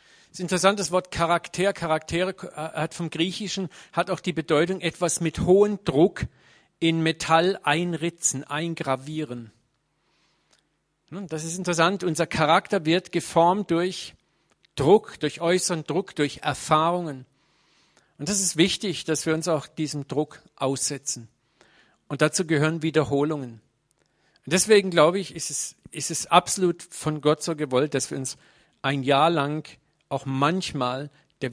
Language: German